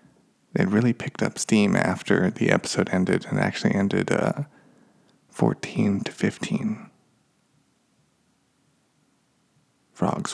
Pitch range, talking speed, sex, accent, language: 105-150 Hz, 100 wpm, male, American, English